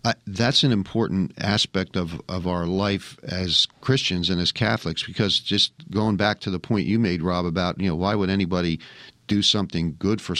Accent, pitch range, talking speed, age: American, 95-110 Hz, 190 wpm, 50-69